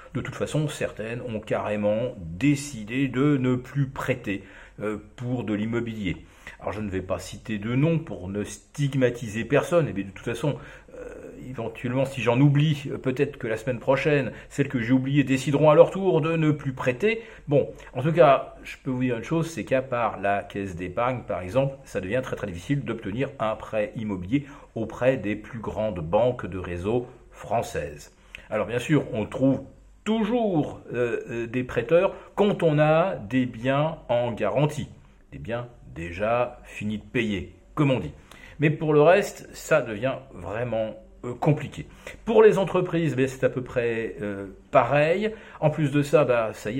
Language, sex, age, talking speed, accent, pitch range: French, male, 40-59, 170 wpm, French, 105-145 Hz